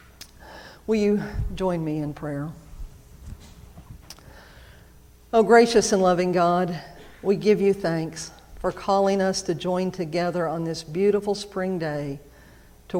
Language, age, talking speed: English, 50-69, 125 wpm